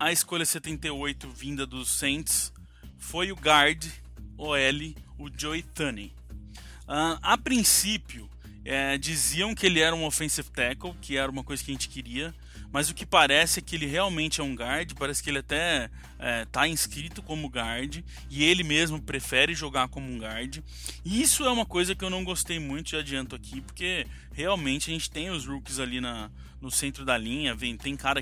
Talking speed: 190 wpm